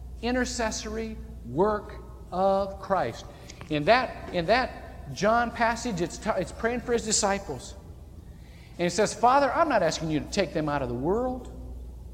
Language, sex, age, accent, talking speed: English, male, 50-69, American, 160 wpm